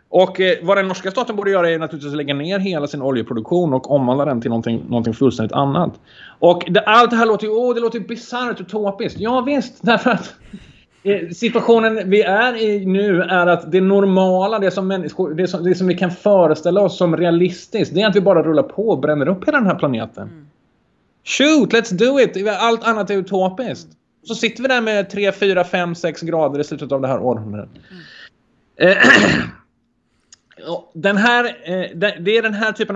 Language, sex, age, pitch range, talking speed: Swedish, male, 30-49, 135-200 Hz, 195 wpm